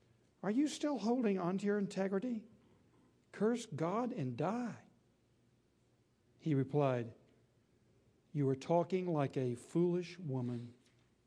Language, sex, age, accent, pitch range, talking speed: English, male, 60-79, American, 130-155 Hz, 110 wpm